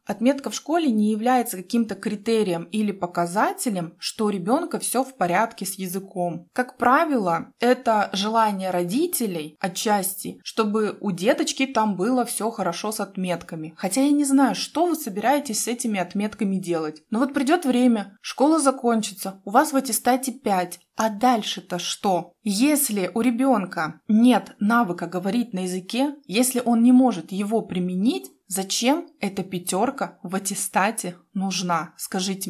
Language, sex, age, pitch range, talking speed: Russian, female, 20-39, 190-250 Hz, 145 wpm